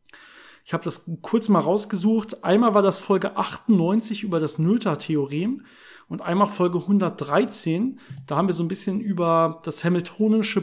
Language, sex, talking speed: German, male, 160 wpm